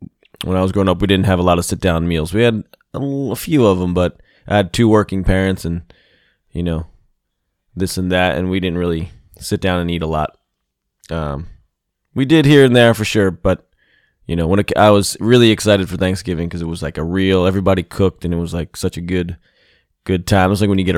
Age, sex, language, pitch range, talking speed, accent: 20-39, male, English, 90-125 Hz, 235 wpm, American